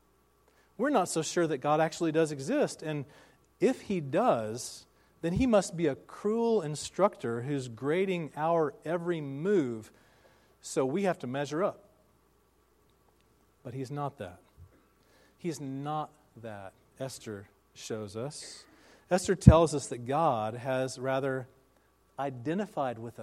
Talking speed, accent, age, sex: 130 wpm, American, 40-59, male